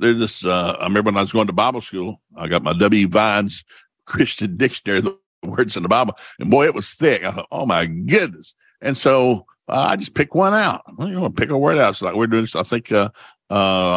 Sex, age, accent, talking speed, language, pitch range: male, 60-79, American, 250 wpm, English, 105-150 Hz